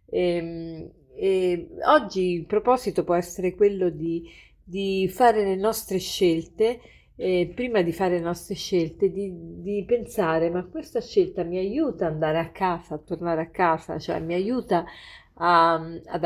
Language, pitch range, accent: Italian, 165-195 Hz, native